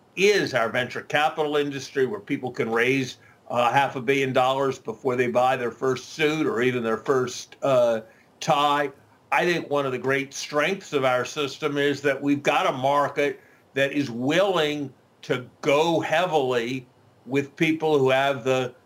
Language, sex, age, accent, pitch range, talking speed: English, male, 50-69, American, 125-150 Hz, 170 wpm